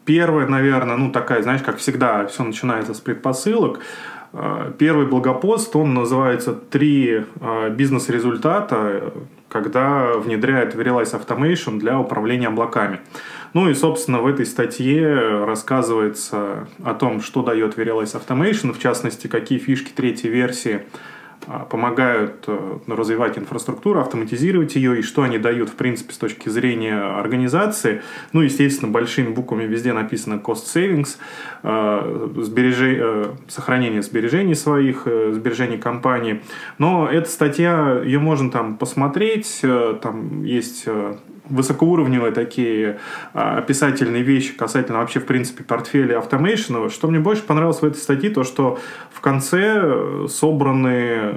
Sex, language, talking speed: male, Russian, 120 wpm